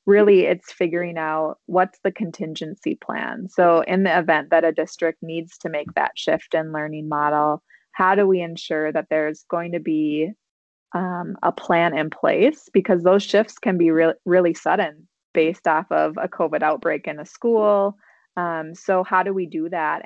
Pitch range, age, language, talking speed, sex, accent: 160-185 Hz, 20-39, English, 185 wpm, female, American